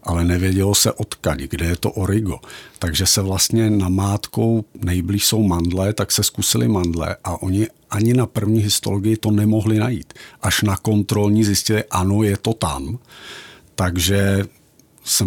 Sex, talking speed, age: male, 155 wpm, 50-69